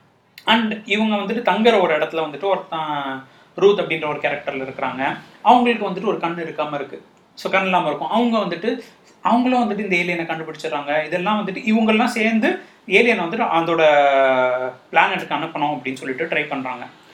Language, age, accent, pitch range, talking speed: Tamil, 30-49, native, 145-215 Hz, 145 wpm